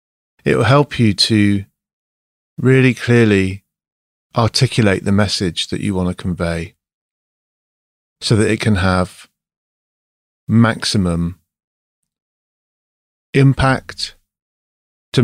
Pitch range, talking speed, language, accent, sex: 85-120 Hz, 85 wpm, English, British, male